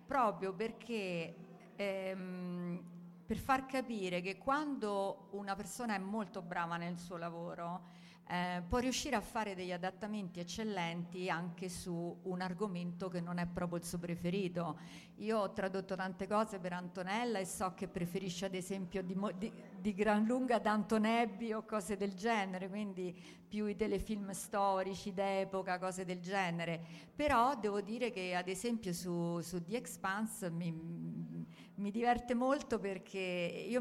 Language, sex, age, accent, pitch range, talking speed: Italian, female, 50-69, native, 180-215 Hz, 145 wpm